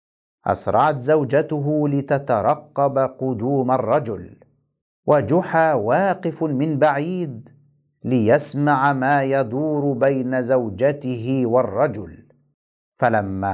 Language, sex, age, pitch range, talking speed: Arabic, male, 50-69, 140-180 Hz, 70 wpm